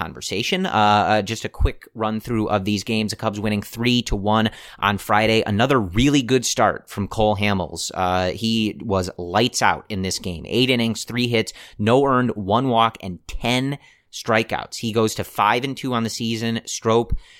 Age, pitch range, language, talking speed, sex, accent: 30-49, 100-120 Hz, English, 190 wpm, male, American